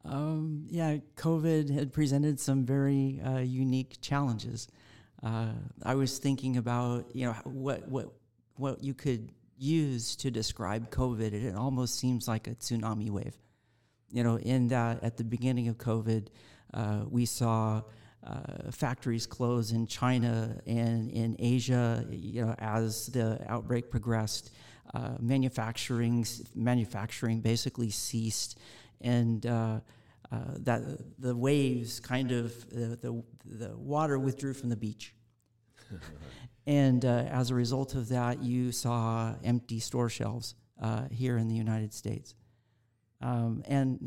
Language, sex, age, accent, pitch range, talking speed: English, male, 50-69, American, 115-130 Hz, 140 wpm